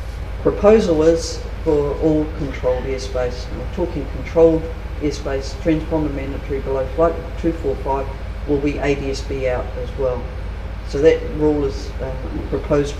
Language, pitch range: English, 90-145 Hz